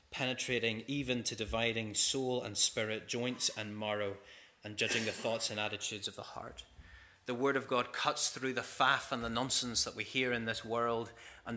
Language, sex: English, male